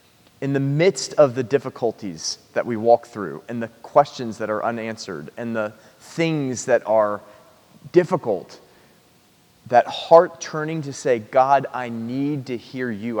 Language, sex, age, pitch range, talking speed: English, male, 30-49, 110-145 Hz, 150 wpm